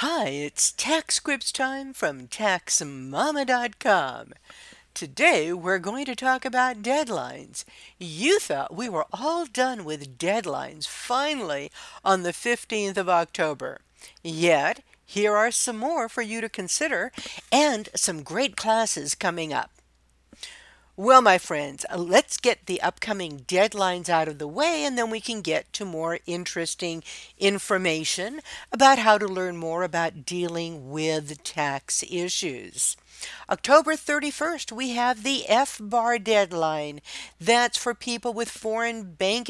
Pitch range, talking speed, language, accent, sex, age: 170-240 Hz, 130 wpm, English, American, female, 60-79